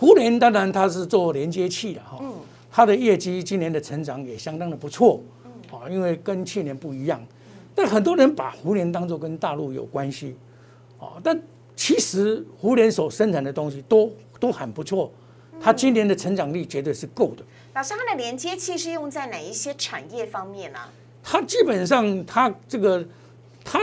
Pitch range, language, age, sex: 155-230 Hz, Chinese, 60-79, male